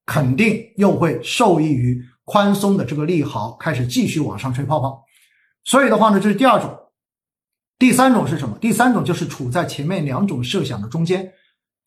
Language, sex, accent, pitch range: Chinese, male, native, 140-210 Hz